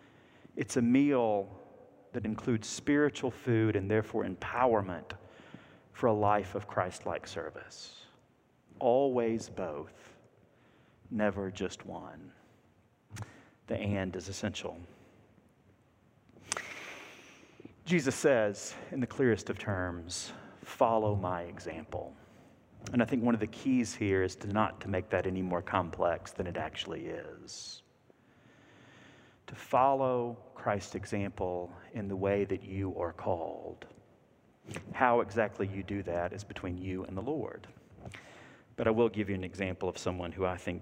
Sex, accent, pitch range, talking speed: male, American, 95-115 Hz, 130 wpm